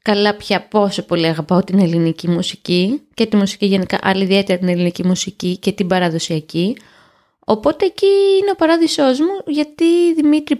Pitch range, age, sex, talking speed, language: 195-270 Hz, 20-39, female, 155 wpm, Greek